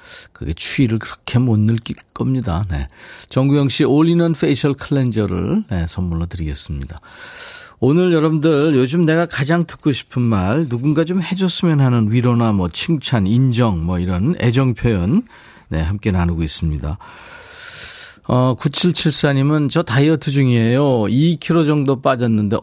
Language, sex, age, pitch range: Korean, male, 40-59, 105-155 Hz